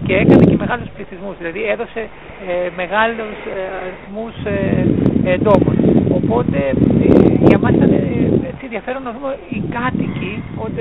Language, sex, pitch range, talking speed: Greek, male, 175-225 Hz, 105 wpm